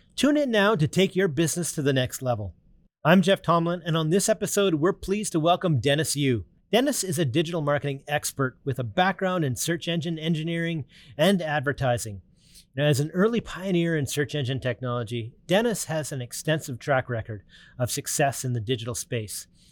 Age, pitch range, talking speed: 30-49, 130-175 Hz, 185 wpm